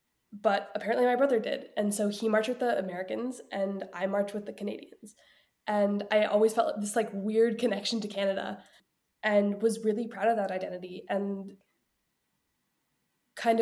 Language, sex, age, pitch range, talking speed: English, female, 10-29, 195-220 Hz, 165 wpm